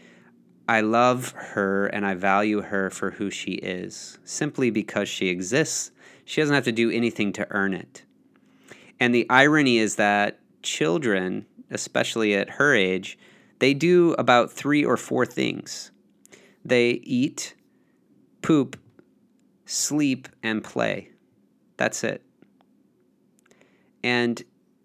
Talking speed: 120 wpm